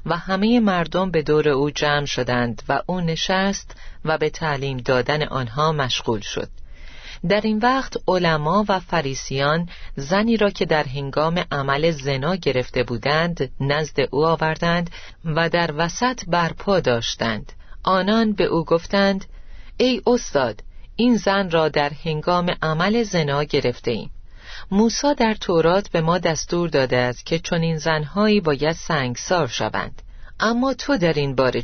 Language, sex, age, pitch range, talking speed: Persian, female, 40-59, 145-195 Hz, 145 wpm